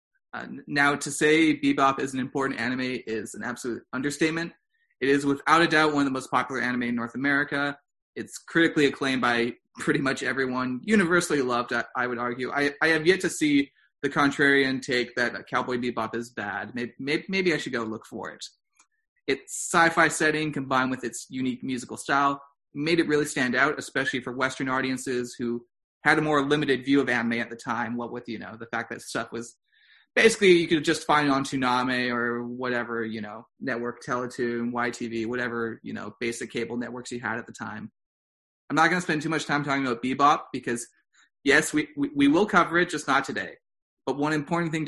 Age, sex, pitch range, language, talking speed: 30-49, male, 125-150 Hz, English, 205 wpm